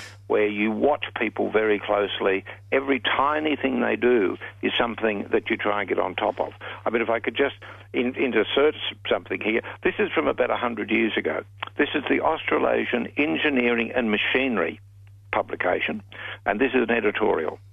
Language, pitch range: English, 100-120 Hz